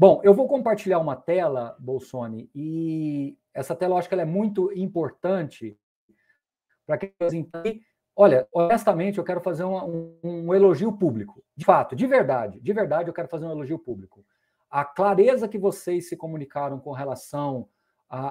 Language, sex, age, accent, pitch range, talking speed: Portuguese, male, 50-69, Brazilian, 150-190 Hz, 160 wpm